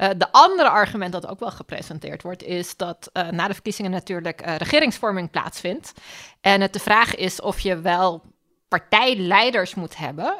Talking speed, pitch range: 175 wpm, 175-225 Hz